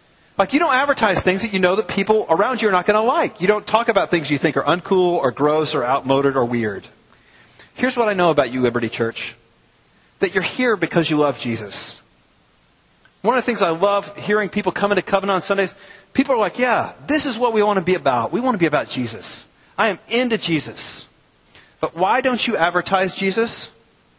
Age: 40-59